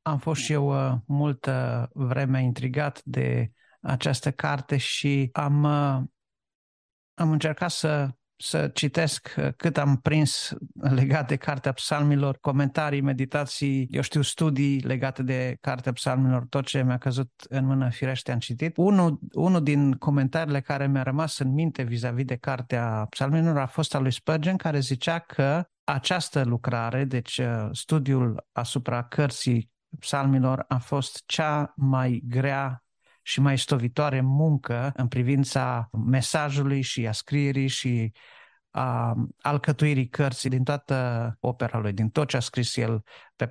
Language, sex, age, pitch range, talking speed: Romanian, male, 50-69, 125-145 Hz, 140 wpm